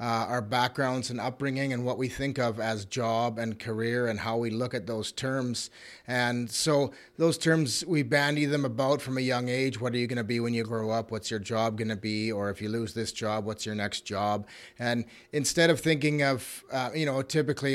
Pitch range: 115-135 Hz